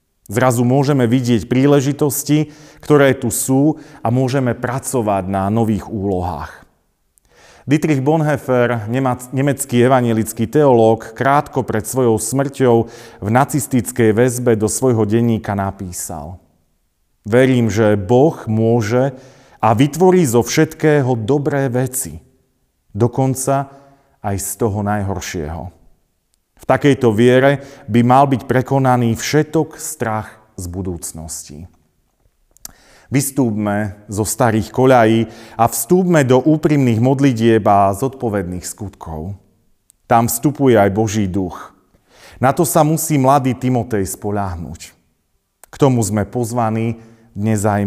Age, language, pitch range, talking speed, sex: 40-59, Slovak, 105-135 Hz, 105 wpm, male